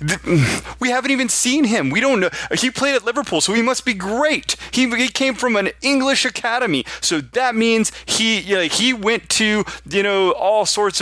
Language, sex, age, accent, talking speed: English, male, 30-49, American, 195 wpm